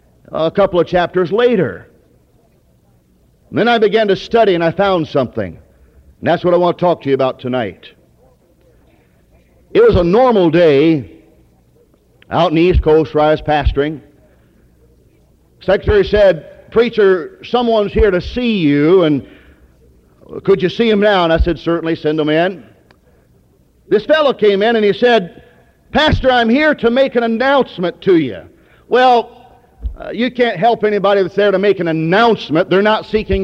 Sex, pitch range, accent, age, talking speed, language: male, 165-235 Hz, American, 50-69, 160 wpm, English